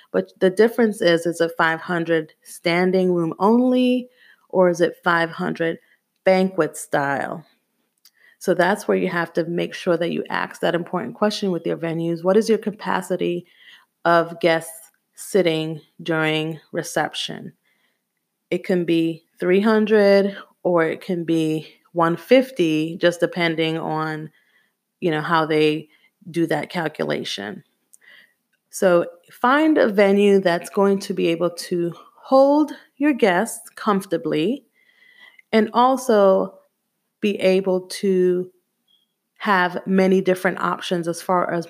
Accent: American